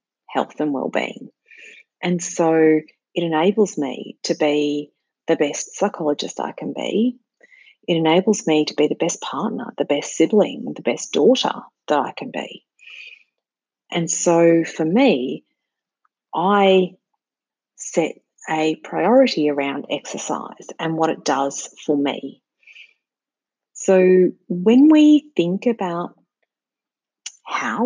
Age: 40-59